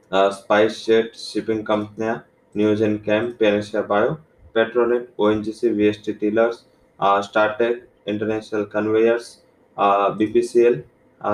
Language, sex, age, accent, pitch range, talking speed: English, male, 20-39, Indian, 105-115 Hz, 110 wpm